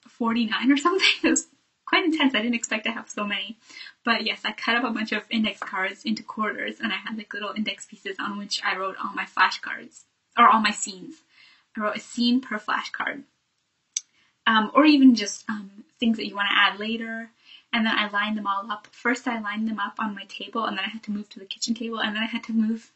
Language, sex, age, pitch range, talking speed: English, female, 10-29, 205-245 Hz, 245 wpm